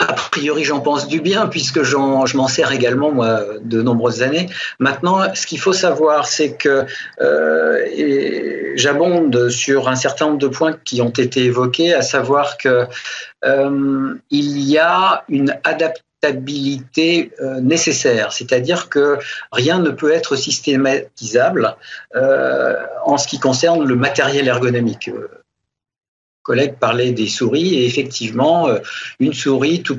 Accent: French